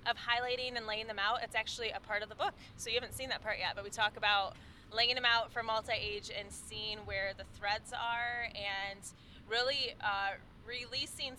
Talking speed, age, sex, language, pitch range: 205 wpm, 20-39, female, English, 215-260 Hz